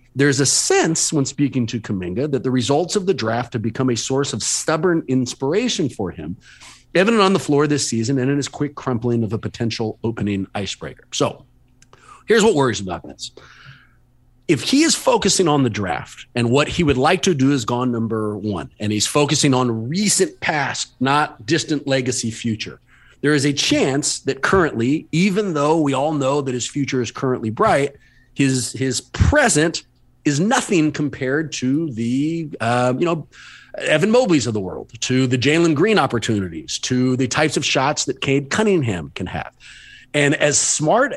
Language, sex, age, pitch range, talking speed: English, male, 40-59, 125-165 Hz, 180 wpm